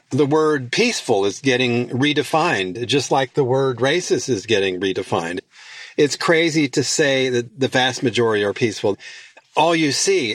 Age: 40-59